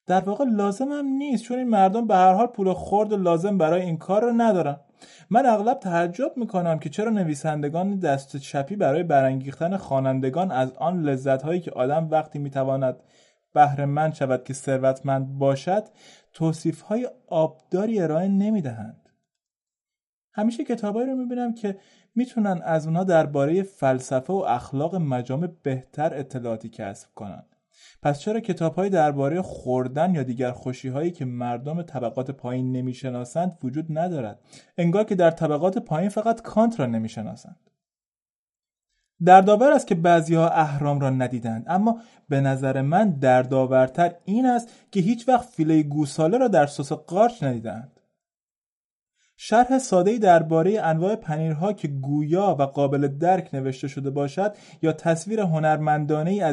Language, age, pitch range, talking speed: English, 30-49, 140-195 Hz, 145 wpm